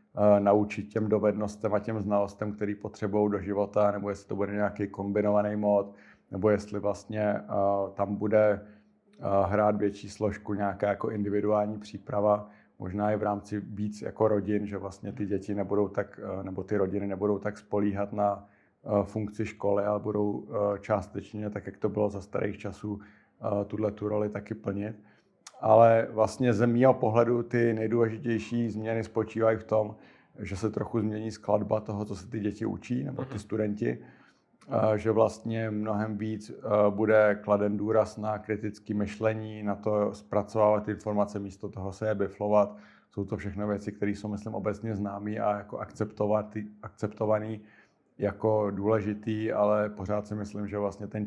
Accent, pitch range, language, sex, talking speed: native, 100-110 Hz, Czech, male, 155 wpm